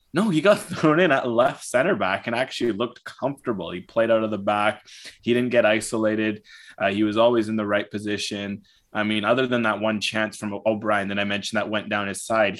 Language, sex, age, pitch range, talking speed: English, male, 20-39, 100-120 Hz, 225 wpm